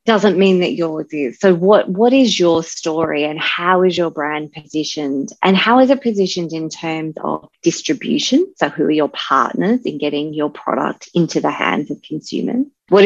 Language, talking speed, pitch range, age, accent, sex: English, 190 wpm, 160-195 Hz, 30-49, Australian, female